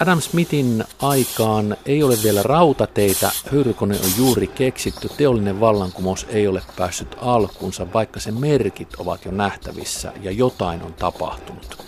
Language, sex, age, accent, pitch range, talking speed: Finnish, male, 50-69, native, 90-115 Hz, 135 wpm